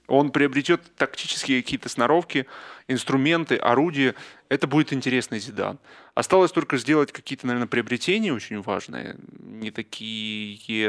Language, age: Russian, 20-39